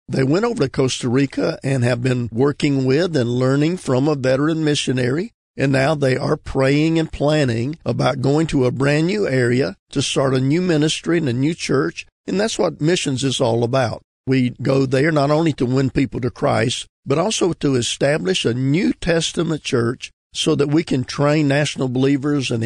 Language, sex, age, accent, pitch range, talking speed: English, male, 50-69, American, 130-155 Hz, 190 wpm